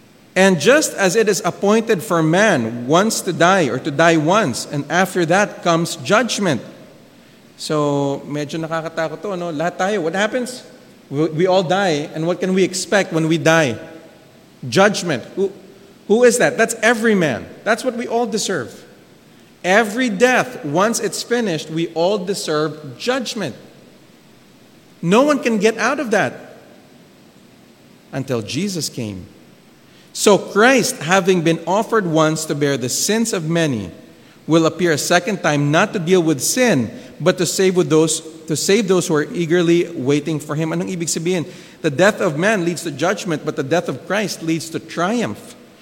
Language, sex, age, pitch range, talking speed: English, male, 40-59, 160-200 Hz, 160 wpm